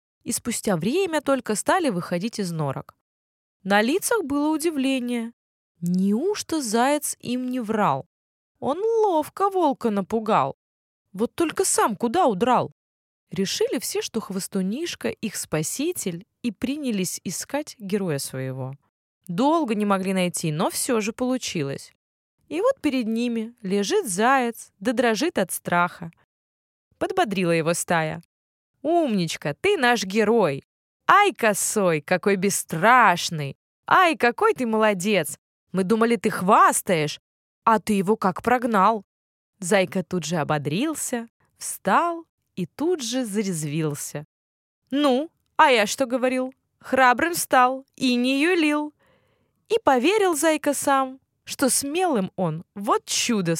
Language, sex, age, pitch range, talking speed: Russian, female, 20-39, 180-270 Hz, 120 wpm